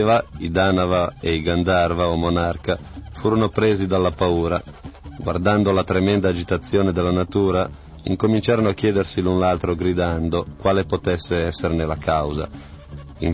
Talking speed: 130 wpm